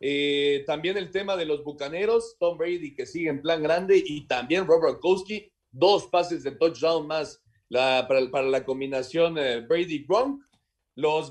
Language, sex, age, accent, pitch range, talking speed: Spanish, male, 40-59, Mexican, 145-240 Hz, 170 wpm